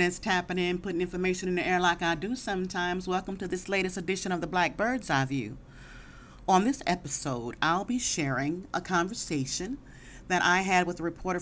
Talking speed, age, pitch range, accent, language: 195 wpm, 40-59, 145-185 Hz, American, English